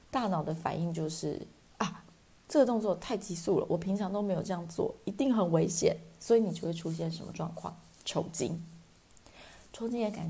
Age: 20-39